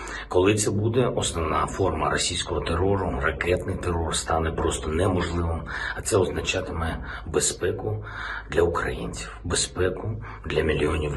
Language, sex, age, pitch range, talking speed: Ukrainian, male, 50-69, 75-90 Hz, 115 wpm